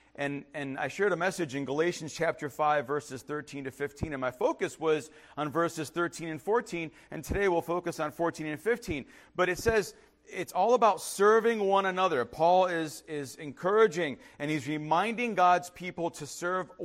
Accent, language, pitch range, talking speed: American, English, 140-180 Hz, 180 wpm